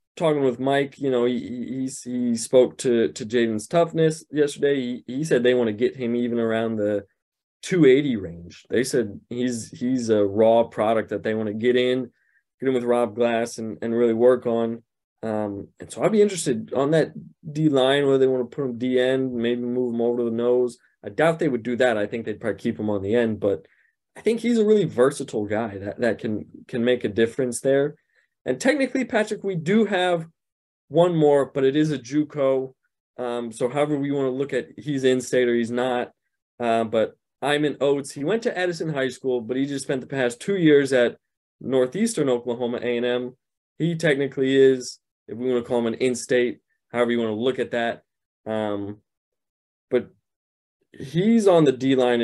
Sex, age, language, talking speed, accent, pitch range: male, 20-39, English, 205 wpm, American, 115-140 Hz